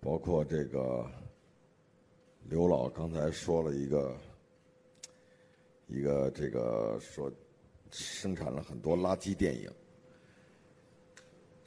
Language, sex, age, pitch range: Chinese, male, 50-69, 80-120 Hz